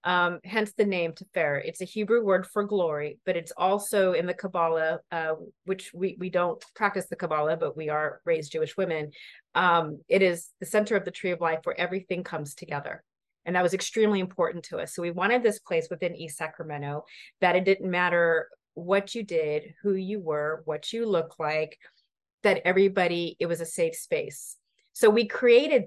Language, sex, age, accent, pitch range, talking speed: English, female, 30-49, American, 170-205 Hz, 195 wpm